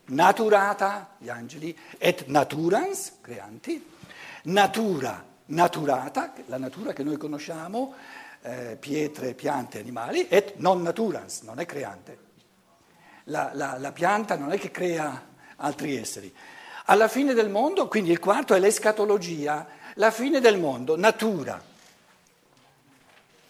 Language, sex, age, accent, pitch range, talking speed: Italian, male, 60-79, native, 150-225 Hz, 120 wpm